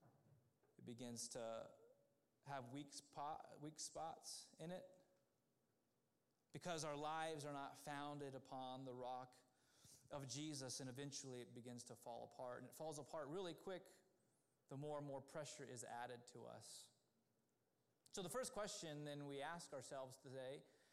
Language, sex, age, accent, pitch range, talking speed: English, male, 30-49, American, 135-180 Hz, 145 wpm